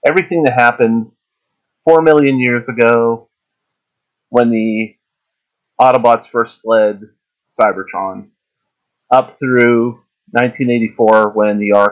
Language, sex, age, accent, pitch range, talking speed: English, male, 30-49, American, 110-125 Hz, 80 wpm